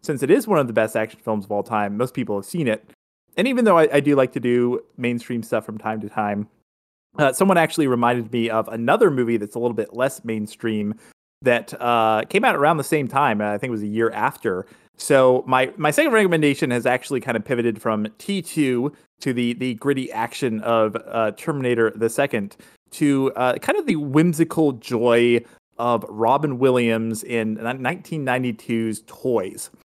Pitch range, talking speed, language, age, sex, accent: 110-135 Hz, 195 wpm, English, 30-49, male, American